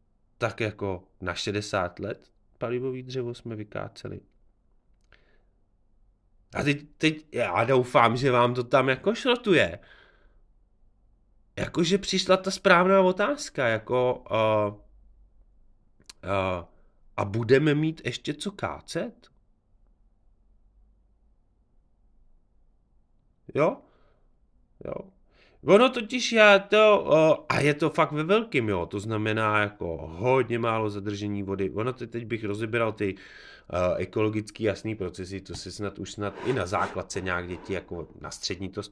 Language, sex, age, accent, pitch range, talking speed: Czech, male, 30-49, native, 95-130 Hz, 115 wpm